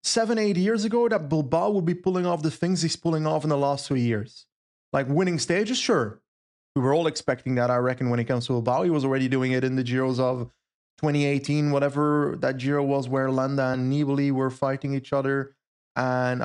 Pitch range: 135-180 Hz